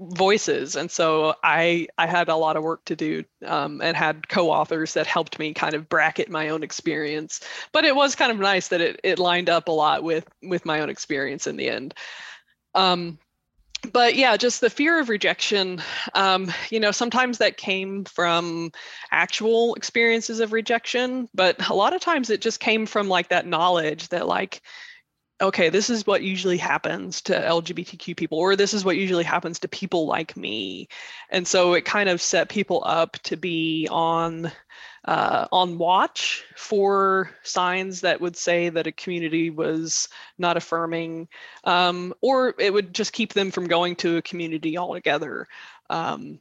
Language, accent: English, American